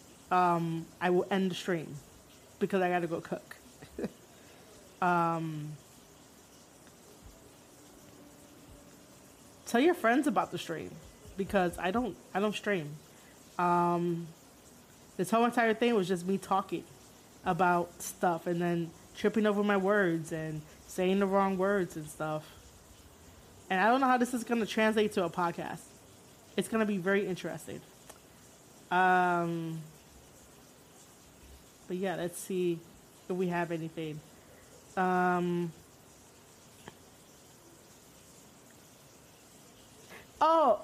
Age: 20-39